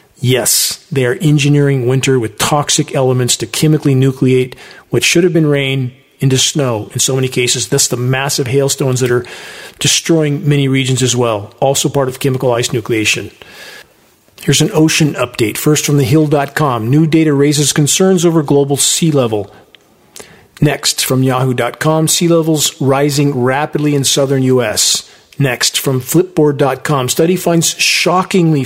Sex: male